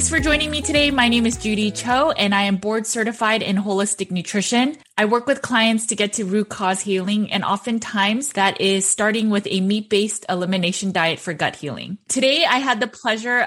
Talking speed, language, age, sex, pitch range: 205 wpm, English, 20-39, female, 180-215 Hz